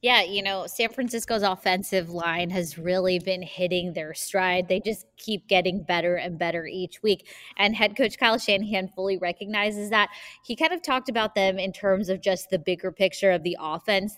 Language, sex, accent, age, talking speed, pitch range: English, female, American, 20-39, 195 wpm, 180-200 Hz